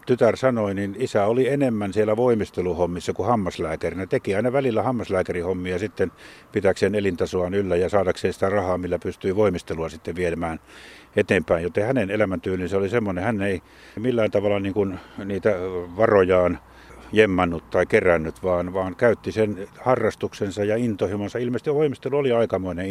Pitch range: 90-105 Hz